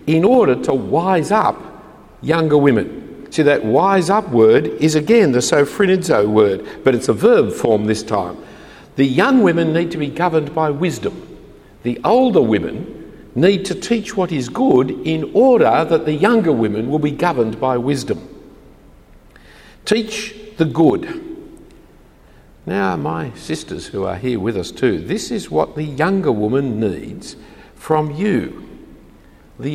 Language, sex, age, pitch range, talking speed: English, male, 50-69, 125-195 Hz, 150 wpm